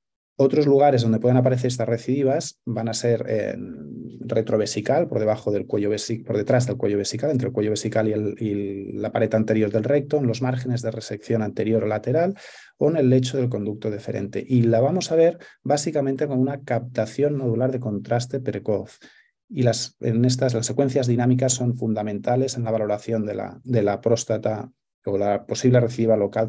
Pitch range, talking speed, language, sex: 105-125 Hz, 190 wpm, Spanish, male